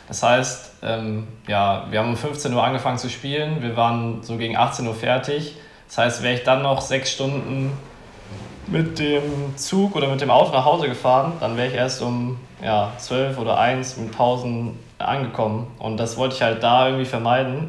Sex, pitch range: male, 115-135 Hz